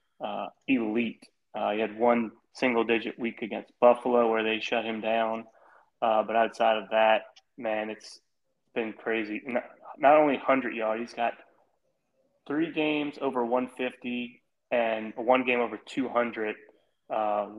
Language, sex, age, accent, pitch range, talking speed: English, male, 20-39, American, 110-135 Hz, 140 wpm